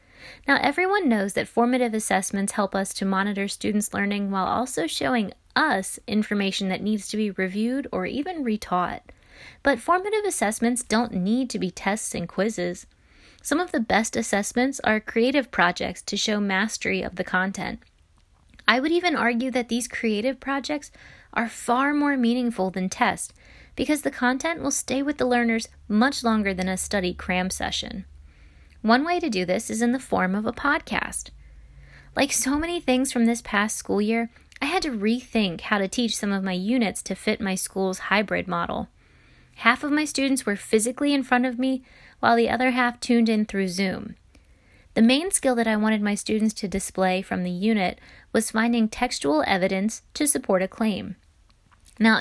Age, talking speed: 20-39, 180 wpm